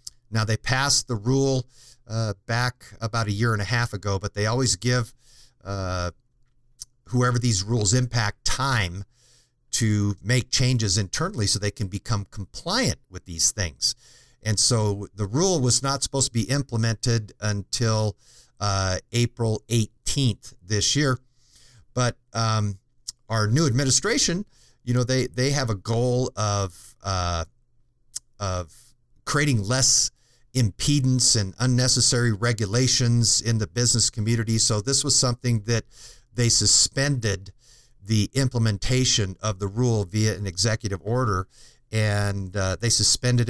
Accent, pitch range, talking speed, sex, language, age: American, 105-125 Hz, 135 wpm, male, English, 50-69